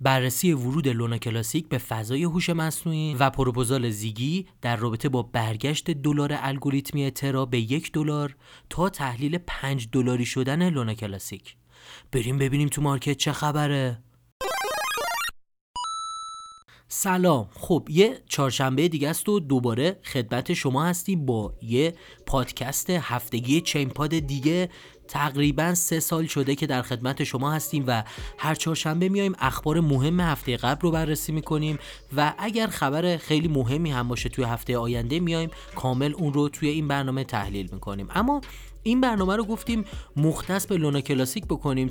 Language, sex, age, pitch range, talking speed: Persian, male, 30-49, 130-170 Hz, 145 wpm